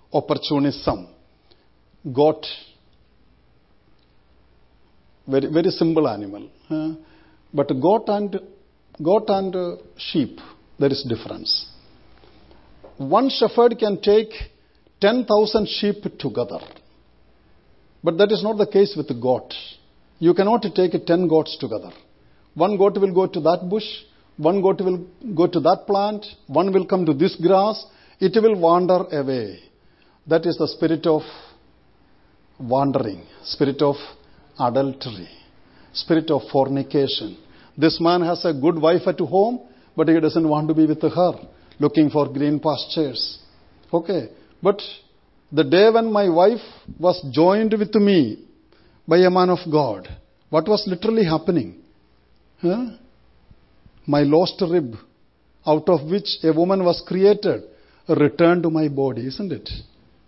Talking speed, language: 125 wpm, English